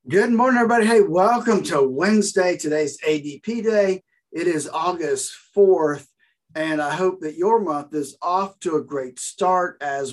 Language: English